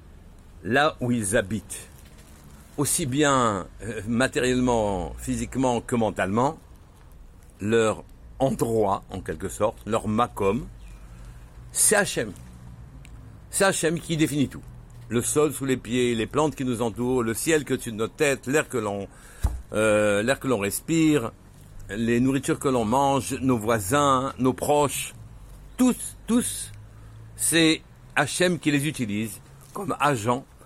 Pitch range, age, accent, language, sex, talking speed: 110-145 Hz, 60-79, French, French, male, 125 wpm